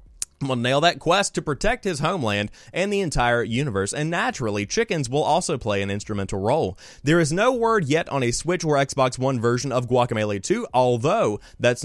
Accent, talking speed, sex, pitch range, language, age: American, 190 wpm, male, 105-145 Hz, English, 30-49